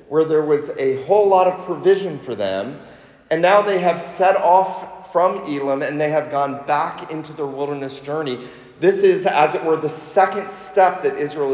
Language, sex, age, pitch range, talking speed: English, male, 40-59, 130-175 Hz, 190 wpm